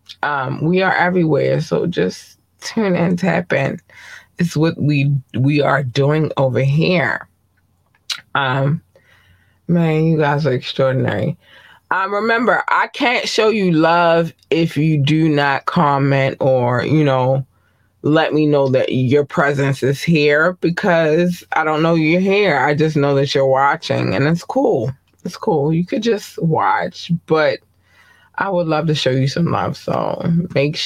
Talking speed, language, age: 155 wpm, English, 20-39